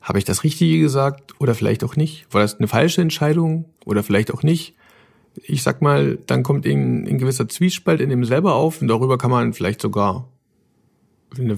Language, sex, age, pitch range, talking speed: German, male, 50-69, 115-175 Hz, 195 wpm